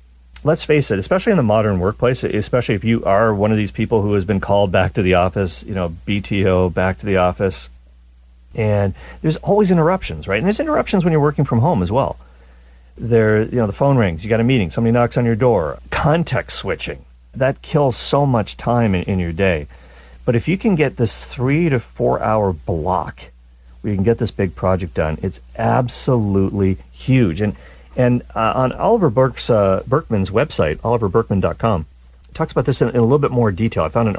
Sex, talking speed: male, 205 wpm